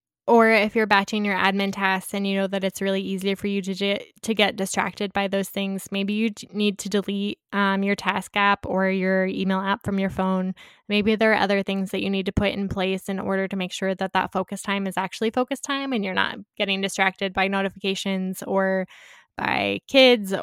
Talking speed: 215 wpm